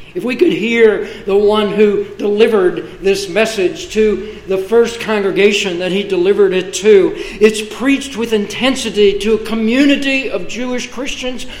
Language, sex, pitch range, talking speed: English, male, 170-220 Hz, 150 wpm